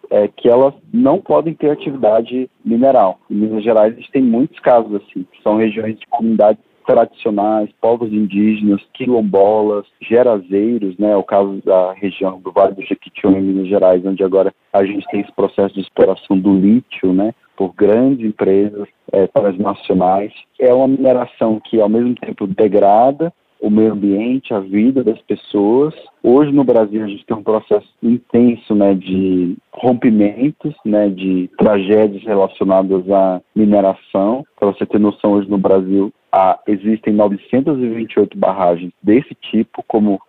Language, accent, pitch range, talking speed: Portuguese, Brazilian, 100-120 Hz, 155 wpm